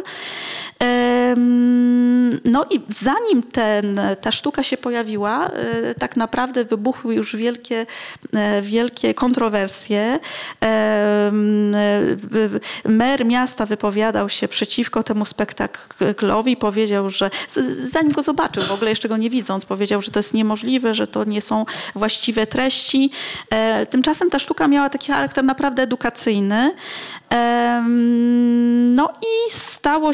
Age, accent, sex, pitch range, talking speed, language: 20-39, native, female, 215-275 Hz, 110 wpm, Polish